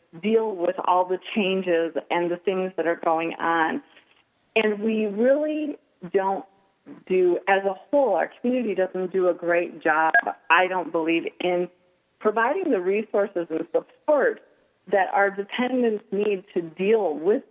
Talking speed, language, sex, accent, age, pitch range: 145 wpm, English, female, American, 40-59, 170-215 Hz